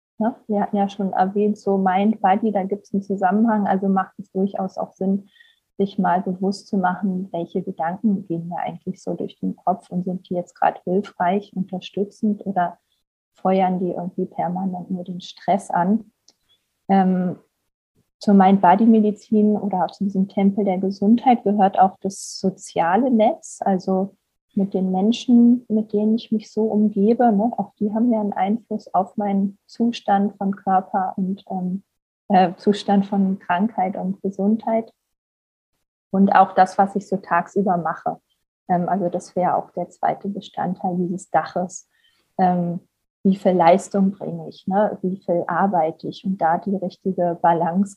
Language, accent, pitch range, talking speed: German, German, 185-205 Hz, 160 wpm